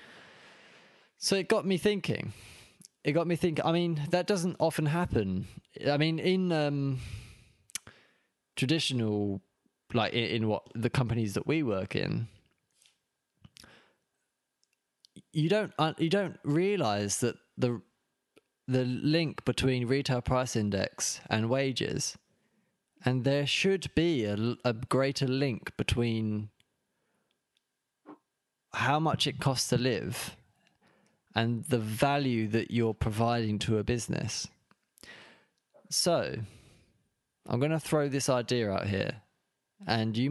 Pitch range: 110-155 Hz